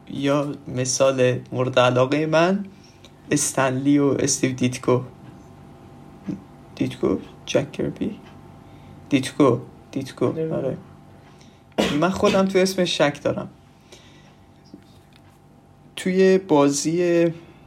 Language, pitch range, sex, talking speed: Persian, 130-160 Hz, male, 80 wpm